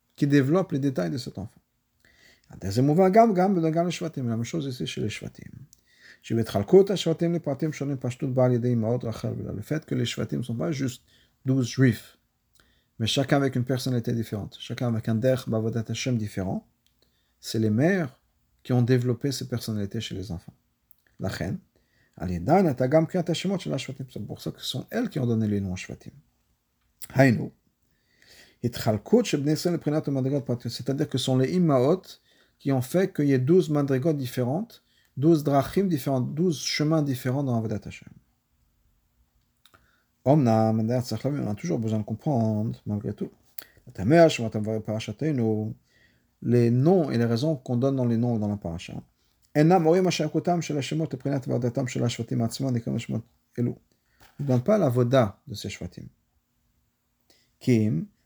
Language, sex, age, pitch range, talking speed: French, male, 50-69, 115-155 Hz, 100 wpm